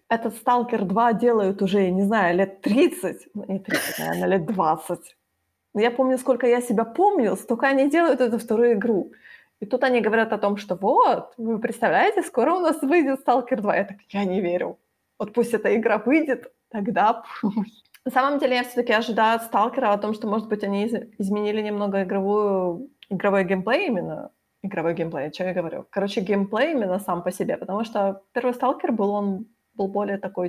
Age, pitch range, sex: 20-39, 200-240 Hz, female